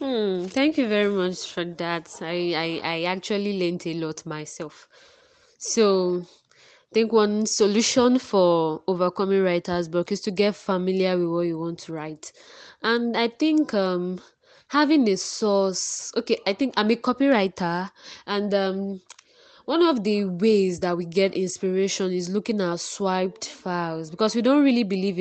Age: 20-39